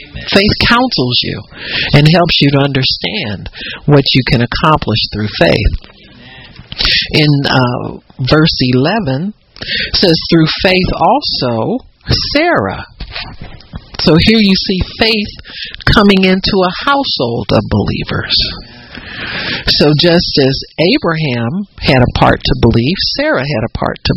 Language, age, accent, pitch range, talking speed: English, 60-79, American, 130-185 Hz, 120 wpm